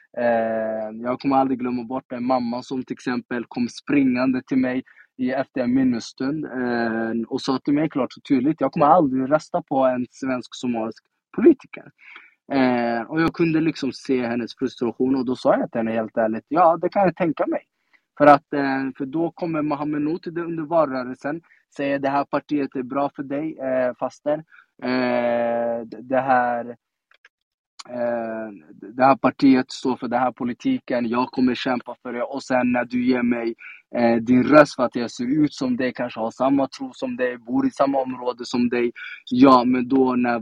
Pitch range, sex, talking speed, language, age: 120-150 Hz, male, 180 wpm, Swedish, 20-39